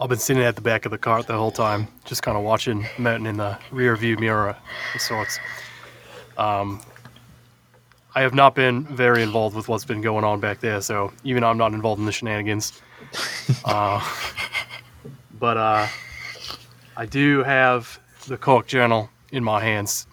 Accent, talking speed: American, 170 wpm